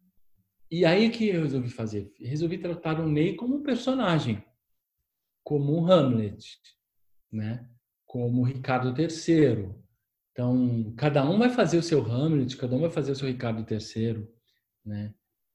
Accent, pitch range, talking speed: Brazilian, 115-160 Hz, 150 wpm